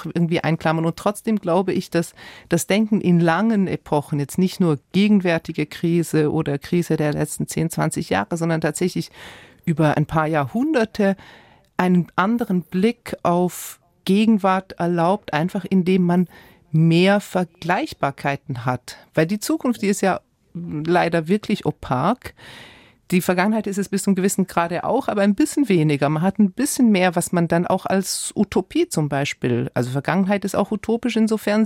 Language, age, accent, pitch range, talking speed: German, 40-59, German, 160-205 Hz, 155 wpm